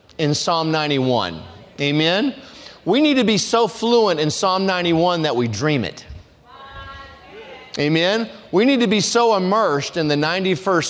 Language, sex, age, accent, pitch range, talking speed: English, male, 40-59, American, 140-210 Hz, 150 wpm